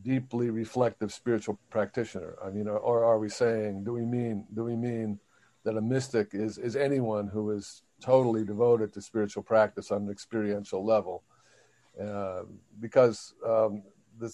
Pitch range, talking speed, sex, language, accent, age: 105-120 Hz, 155 wpm, male, English, American, 50-69